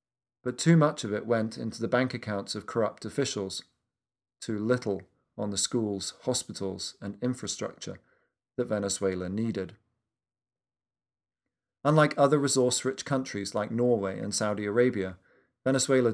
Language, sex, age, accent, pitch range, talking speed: English, male, 40-59, British, 100-125 Hz, 125 wpm